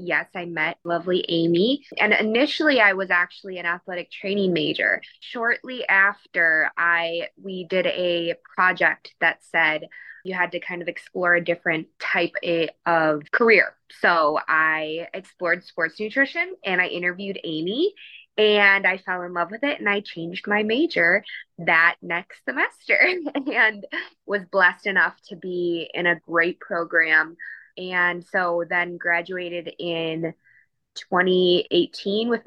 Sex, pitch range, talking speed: female, 175-205 Hz, 140 wpm